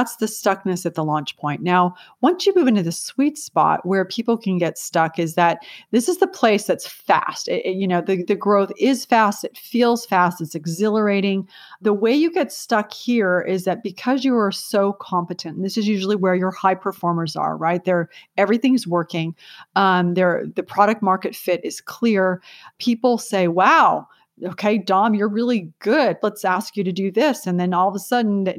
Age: 30-49